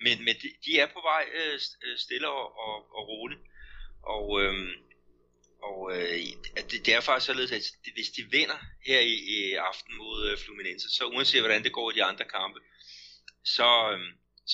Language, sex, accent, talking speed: Danish, male, native, 180 wpm